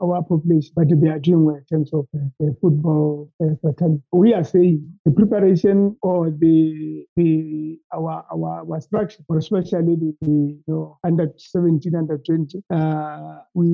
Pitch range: 155-190 Hz